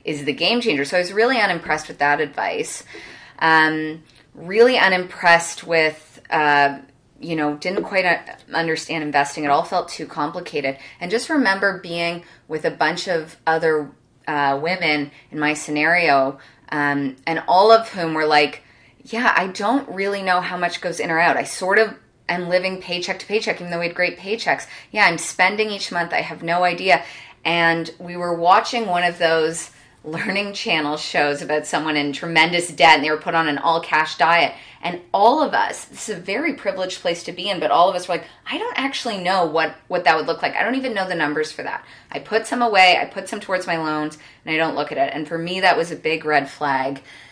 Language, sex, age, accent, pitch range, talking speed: English, female, 20-39, American, 150-180 Hz, 210 wpm